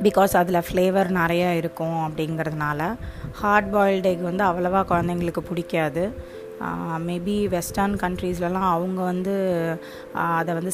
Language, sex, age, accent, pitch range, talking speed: Tamil, female, 20-39, native, 165-195 Hz, 110 wpm